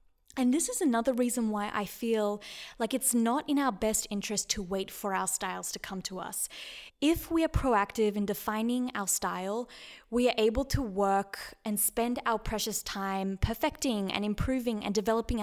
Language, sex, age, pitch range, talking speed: English, female, 20-39, 200-250 Hz, 185 wpm